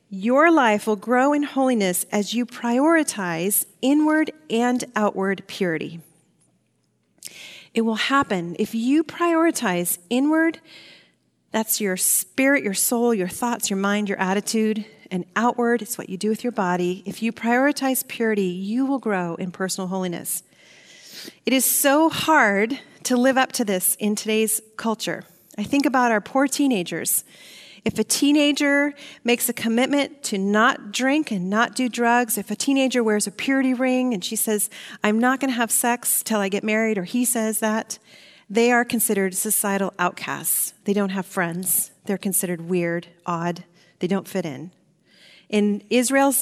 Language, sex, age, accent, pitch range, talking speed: English, female, 40-59, American, 195-255 Hz, 160 wpm